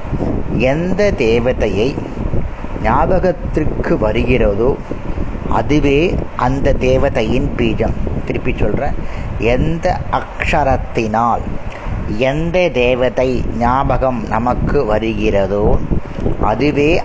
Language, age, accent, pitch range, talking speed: Tamil, 30-49, native, 110-140 Hz, 60 wpm